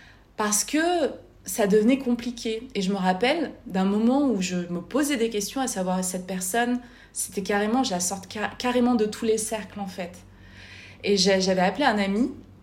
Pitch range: 185-225 Hz